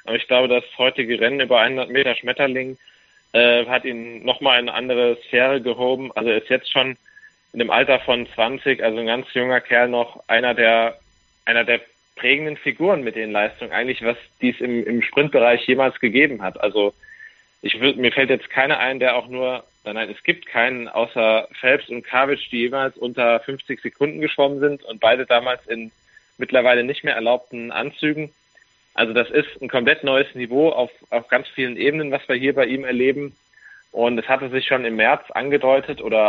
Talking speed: 190 wpm